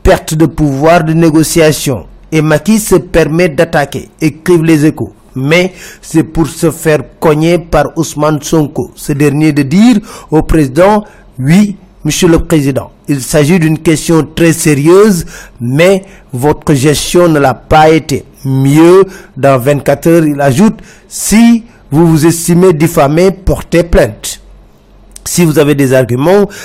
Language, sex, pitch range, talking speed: French, male, 145-180 Hz, 140 wpm